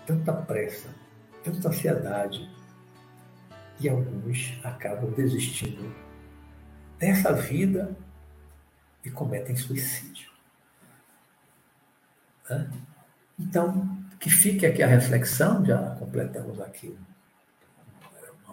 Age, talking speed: 60-79, 75 wpm